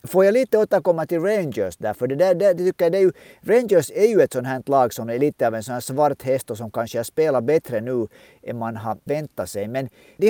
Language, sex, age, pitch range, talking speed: Swedish, male, 50-69, 110-170 Hz, 250 wpm